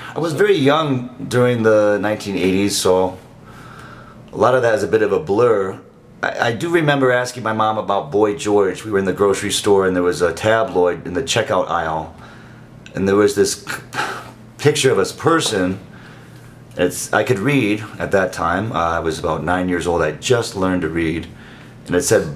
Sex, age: male, 30-49